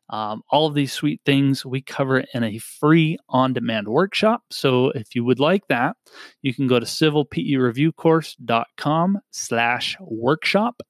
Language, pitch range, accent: English, 125-155 Hz, American